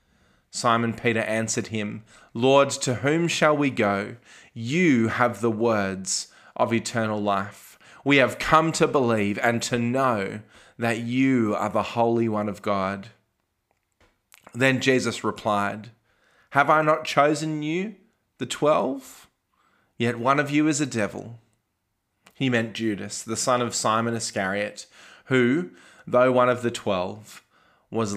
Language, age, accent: English, 20-39, Australian